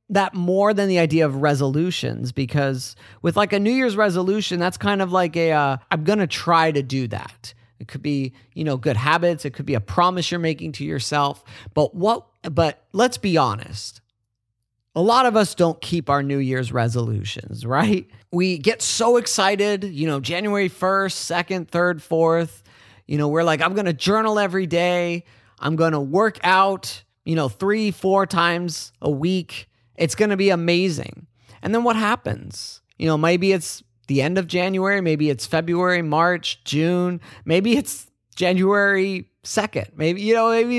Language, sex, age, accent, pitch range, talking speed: English, male, 30-49, American, 135-185 Hz, 175 wpm